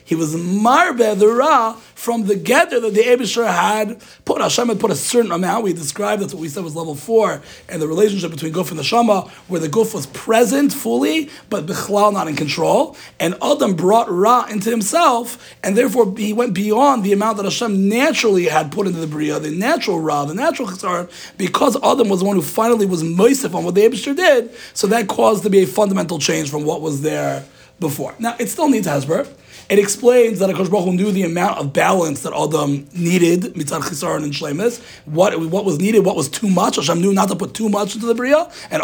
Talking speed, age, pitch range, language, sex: 220 wpm, 30-49, 180-235 Hz, English, male